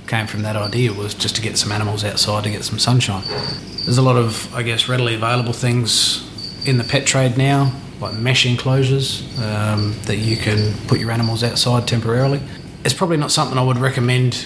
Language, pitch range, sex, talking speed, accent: English, 105-125 Hz, male, 200 wpm, Australian